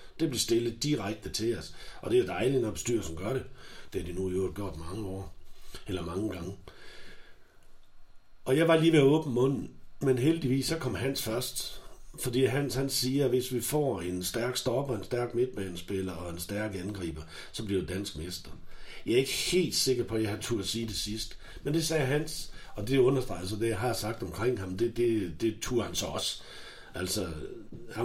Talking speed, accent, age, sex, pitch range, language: 215 wpm, native, 60-79, male, 95-125 Hz, Danish